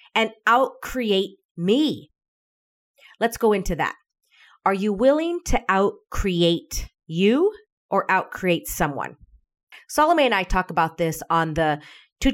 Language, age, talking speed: English, 30-49, 120 wpm